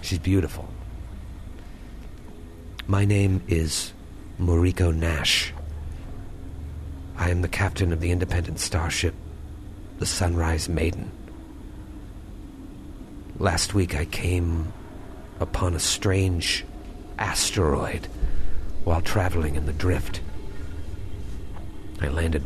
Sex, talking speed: male, 90 wpm